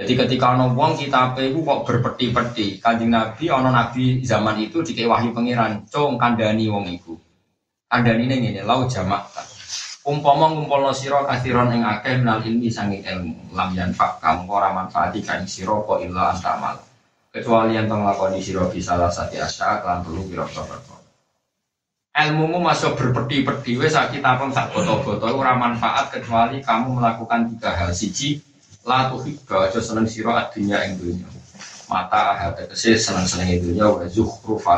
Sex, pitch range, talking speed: male, 90-120 Hz, 150 wpm